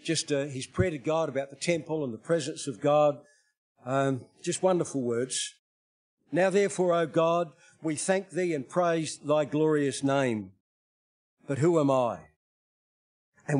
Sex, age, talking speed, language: male, 50-69, 155 wpm, English